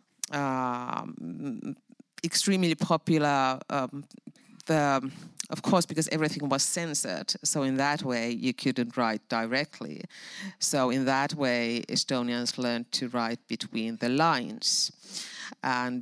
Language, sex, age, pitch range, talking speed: English, female, 50-69, 135-180 Hz, 110 wpm